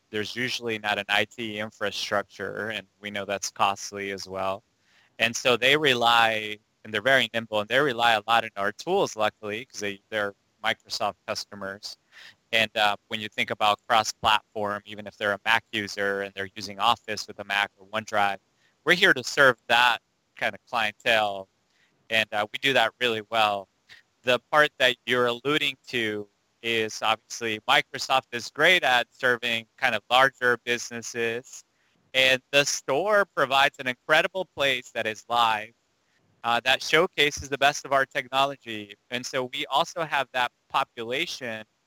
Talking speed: 160 wpm